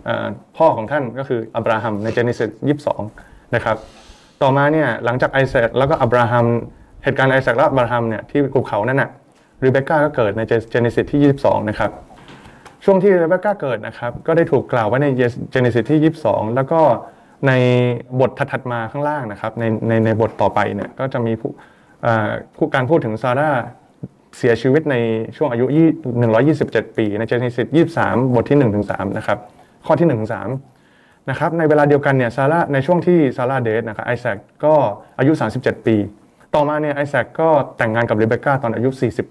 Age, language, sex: 20-39, Thai, male